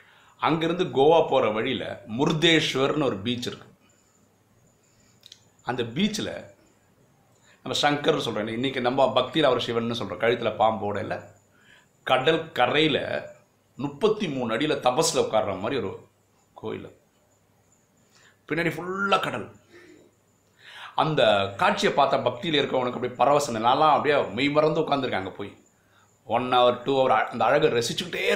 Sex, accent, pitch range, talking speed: male, native, 105-145 Hz, 110 wpm